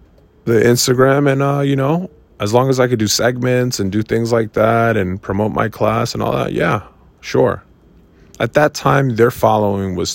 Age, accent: 20-39, American